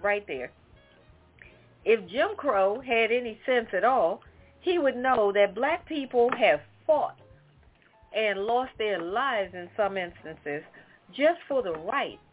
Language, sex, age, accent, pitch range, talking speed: English, female, 40-59, American, 215-305 Hz, 140 wpm